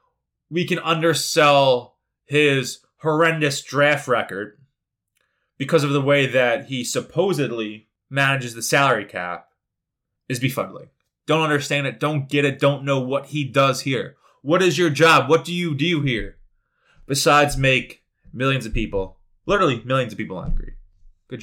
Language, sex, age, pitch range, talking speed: English, male, 20-39, 115-150 Hz, 145 wpm